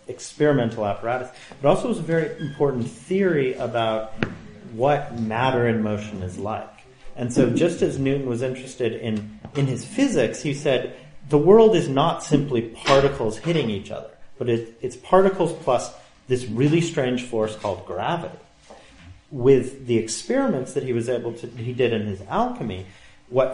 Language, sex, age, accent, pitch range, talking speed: English, male, 40-59, American, 110-145 Hz, 160 wpm